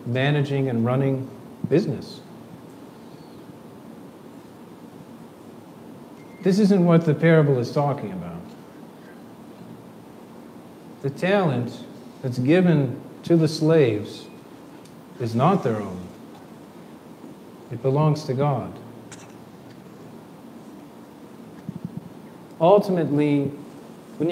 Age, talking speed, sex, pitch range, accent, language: 40-59, 70 wpm, male, 130-155 Hz, American, English